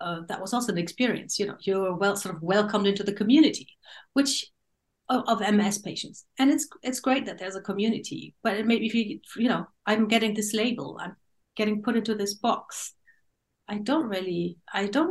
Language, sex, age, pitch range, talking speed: English, female, 60-79, 175-230 Hz, 205 wpm